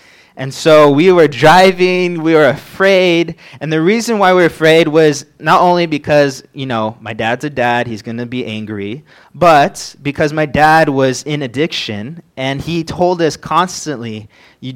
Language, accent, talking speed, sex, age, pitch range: English, American, 175 wpm, male, 20-39, 125-160 Hz